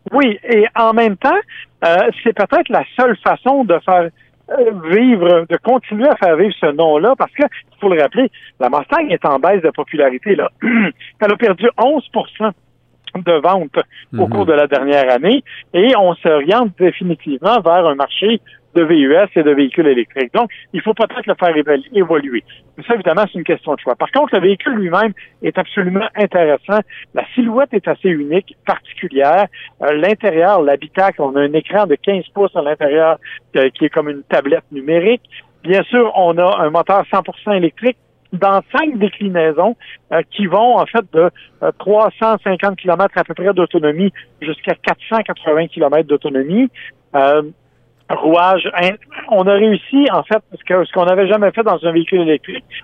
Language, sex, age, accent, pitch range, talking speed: French, male, 60-79, French, 160-220 Hz, 175 wpm